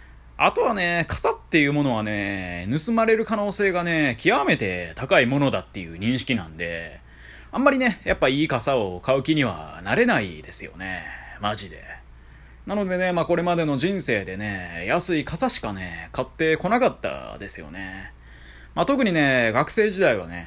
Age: 20-39